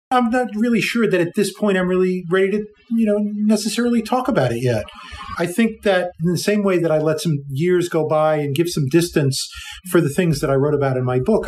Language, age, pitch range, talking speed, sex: English, 40-59, 155-205 Hz, 245 wpm, male